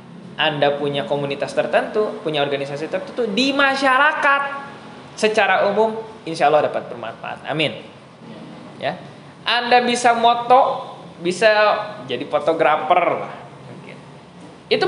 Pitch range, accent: 150-215 Hz, native